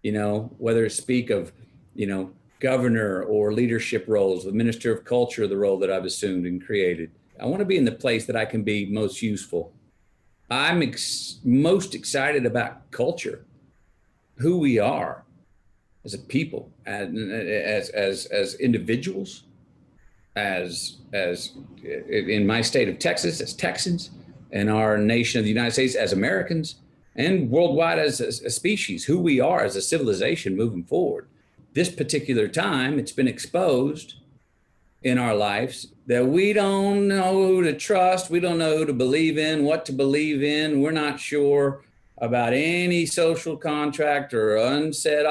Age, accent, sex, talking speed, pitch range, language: 50-69, American, male, 160 wpm, 110-160 Hz, English